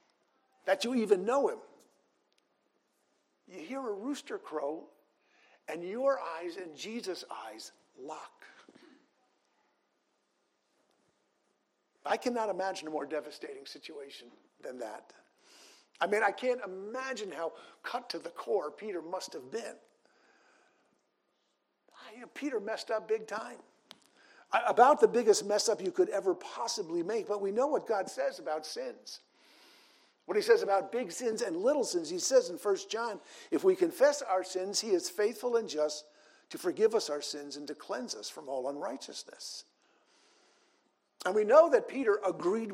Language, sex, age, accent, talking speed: English, male, 50-69, American, 145 wpm